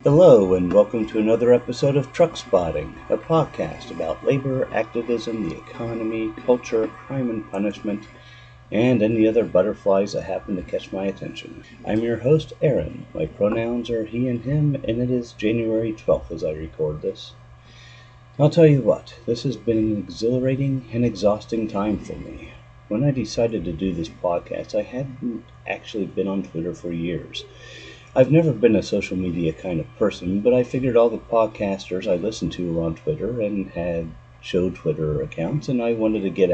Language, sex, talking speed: English, male, 180 wpm